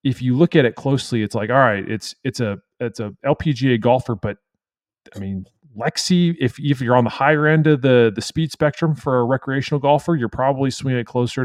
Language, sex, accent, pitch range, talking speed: English, male, American, 110-155 Hz, 220 wpm